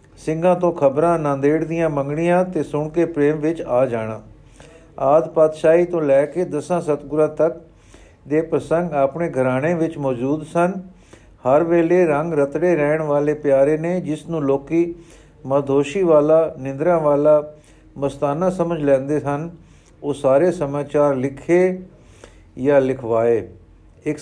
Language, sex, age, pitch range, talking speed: Punjabi, male, 50-69, 140-170 Hz, 130 wpm